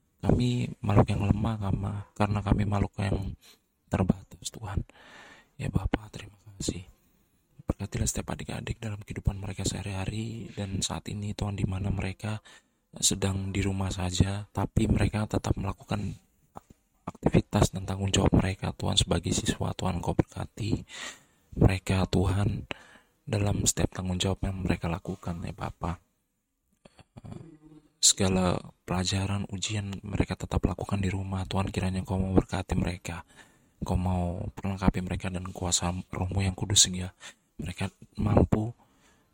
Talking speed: 130 wpm